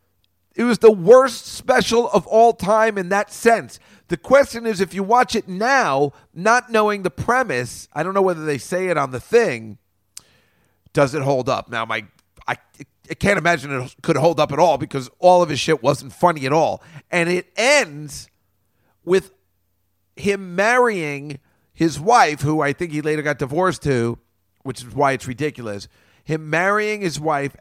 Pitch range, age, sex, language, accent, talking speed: 130-170 Hz, 40-59, male, English, American, 175 wpm